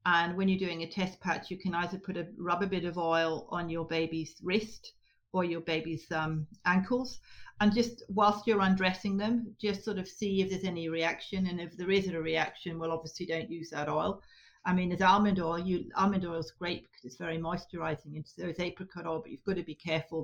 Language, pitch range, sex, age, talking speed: English, 170-200 Hz, female, 40-59, 230 wpm